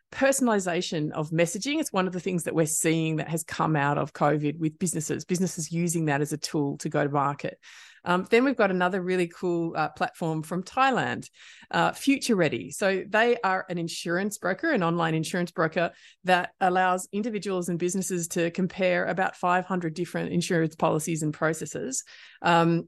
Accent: Australian